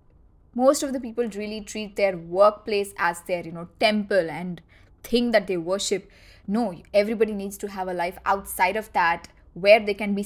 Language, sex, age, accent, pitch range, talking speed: English, female, 20-39, Indian, 185-230 Hz, 185 wpm